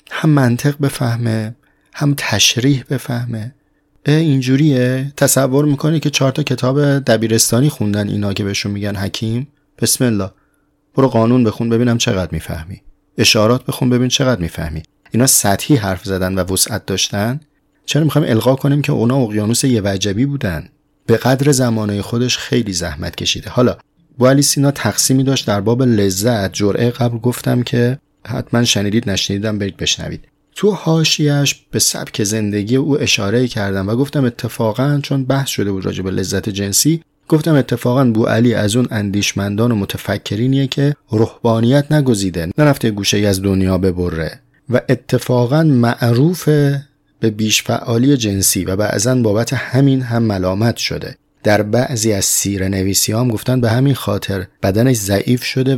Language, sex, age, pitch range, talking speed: Persian, male, 30-49, 100-135 Hz, 145 wpm